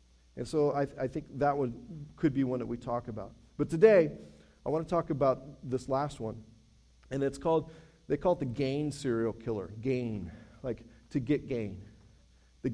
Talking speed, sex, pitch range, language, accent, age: 190 wpm, male, 120-145 Hz, English, American, 40-59